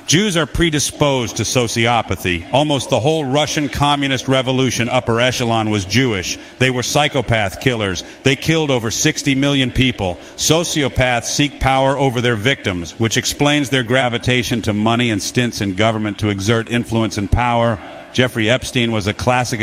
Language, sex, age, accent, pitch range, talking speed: English, male, 50-69, American, 110-135 Hz, 155 wpm